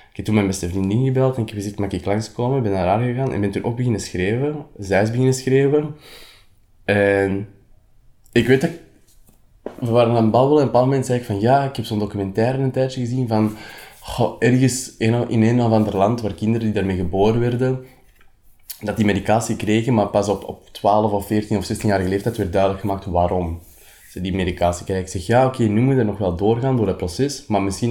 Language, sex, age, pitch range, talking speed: Dutch, male, 20-39, 95-120 Hz, 220 wpm